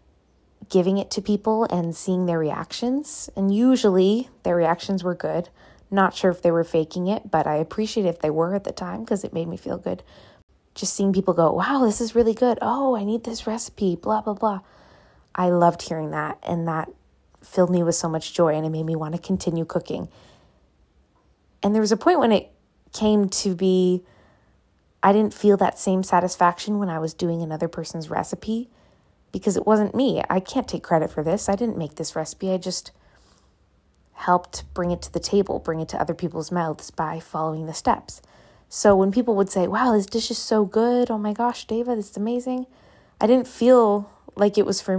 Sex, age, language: female, 20-39, English